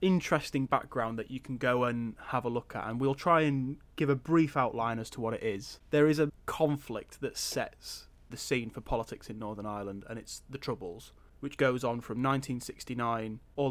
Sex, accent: male, British